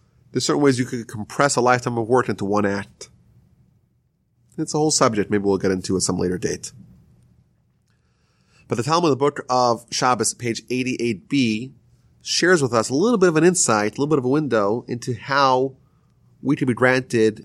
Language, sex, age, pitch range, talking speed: English, male, 30-49, 115-150 Hz, 200 wpm